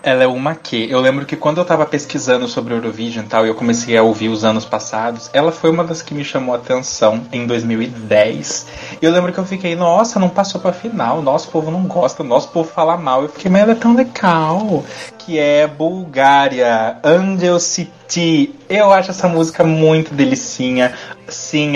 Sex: male